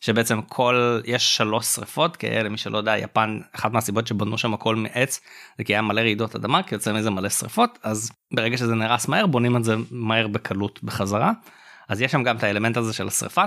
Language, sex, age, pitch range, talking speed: Hebrew, male, 20-39, 110-150 Hz, 210 wpm